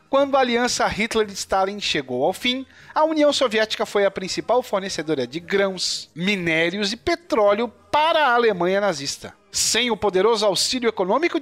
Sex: male